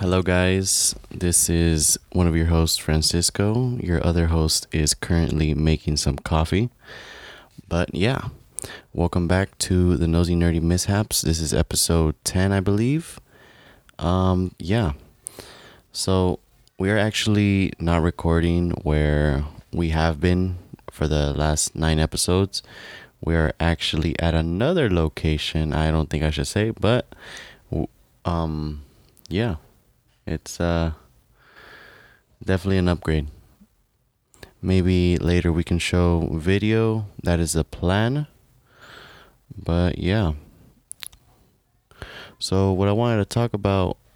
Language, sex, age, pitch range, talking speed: English, male, 20-39, 80-100 Hz, 115 wpm